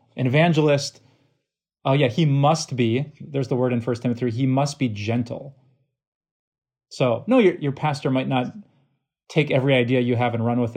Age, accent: 20-39, American